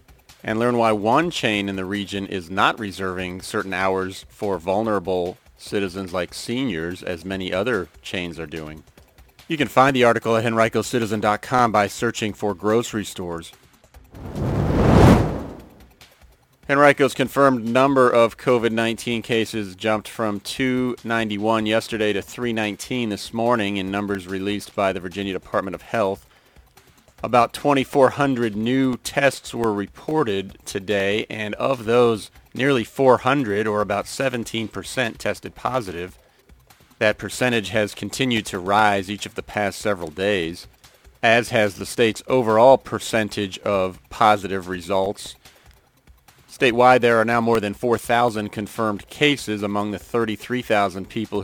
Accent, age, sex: American, 40-59, male